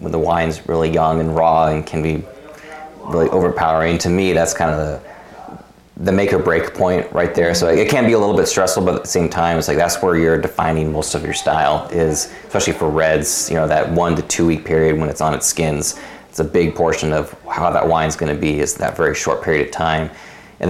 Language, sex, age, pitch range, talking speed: English, male, 30-49, 75-85 Hz, 240 wpm